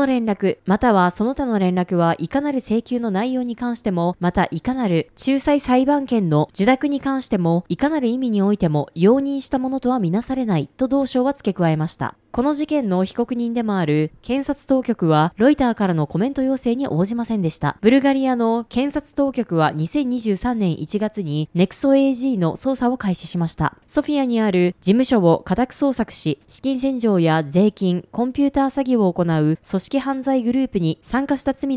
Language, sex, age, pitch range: Japanese, female, 20-39, 180-270 Hz